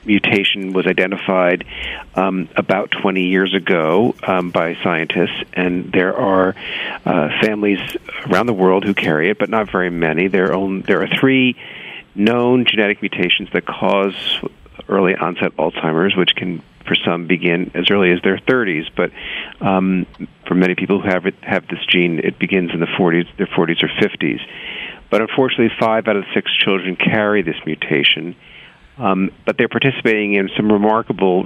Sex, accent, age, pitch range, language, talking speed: male, American, 50-69, 90-105 Hz, English, 165 wpm